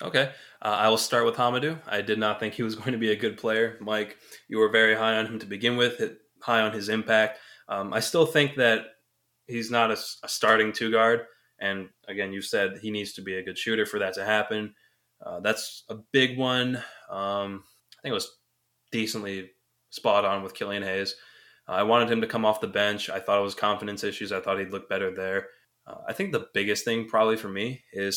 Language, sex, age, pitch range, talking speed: English, male, 20-39, 100-115 Hz, 230 wpm